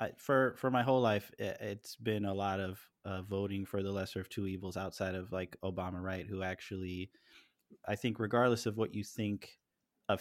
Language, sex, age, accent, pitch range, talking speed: English, male, 20-39, American, 95-110 Hz, 195 wpm